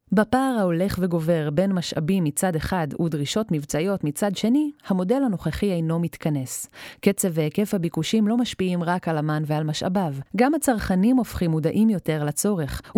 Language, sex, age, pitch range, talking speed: Hebrew, female, 30-49, 165-210 Hz, 145 wpm